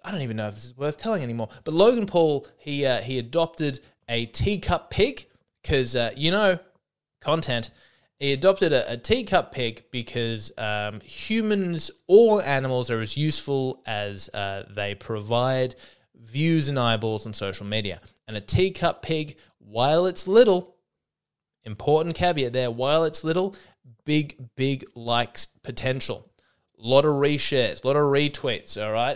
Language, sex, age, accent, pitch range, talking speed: English, male, 20-39, Australian, 115-155 Hz, 150 wpm